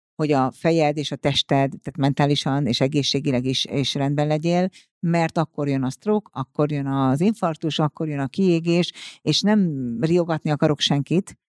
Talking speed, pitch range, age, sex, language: 165 wpm, 135-165 Hz, 50-69, female, Hungarian